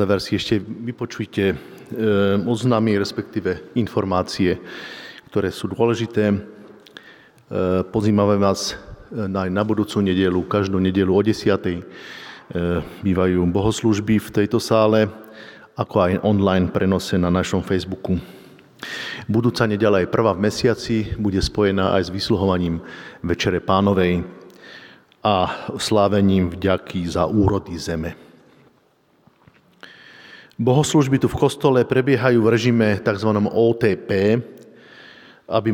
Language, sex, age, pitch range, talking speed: Slovak, male, 50-69, 95-110 Hz, 100 wpm